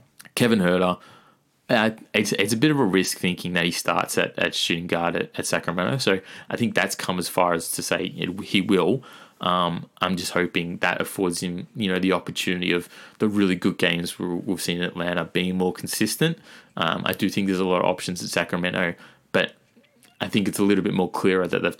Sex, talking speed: male, 215 wpm